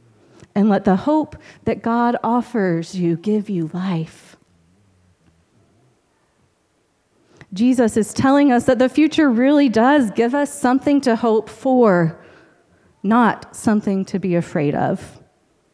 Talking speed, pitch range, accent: 120 wpm, 170-255 Hz, American